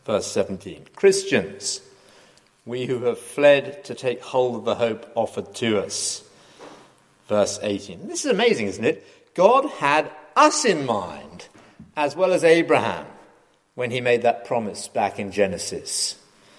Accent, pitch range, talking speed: British, 105-140 Hz, 145 wpm